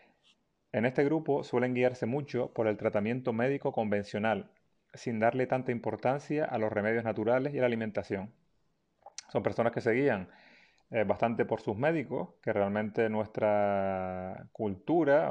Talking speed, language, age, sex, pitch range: 145 wpm, Spanish, 30-49, male, 105-125 Hz